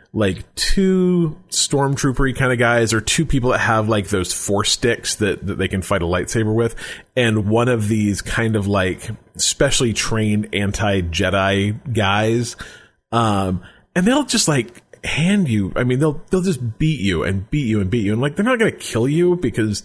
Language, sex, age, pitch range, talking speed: English, male, 30-49, 100-145 Hz, 195 wpm